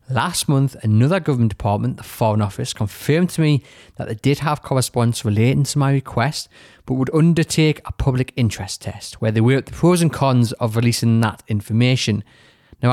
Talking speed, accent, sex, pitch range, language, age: 185 wpm, British, male, 110-140 Hz, English, 20-39